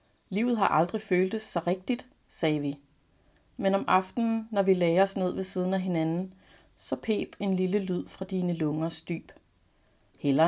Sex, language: female, Danish